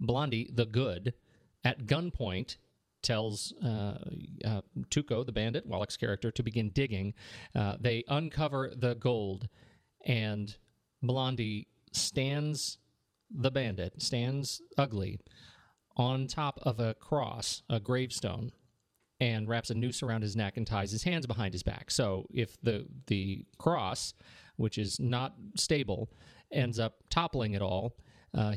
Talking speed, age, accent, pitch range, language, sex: 135 wpm, 40-59, American, 105-135 Hz, English, male